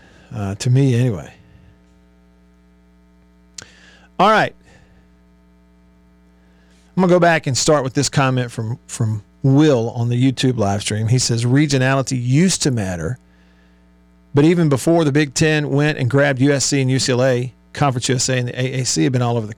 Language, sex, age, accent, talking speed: English, male, 50-69, American, 160 wpm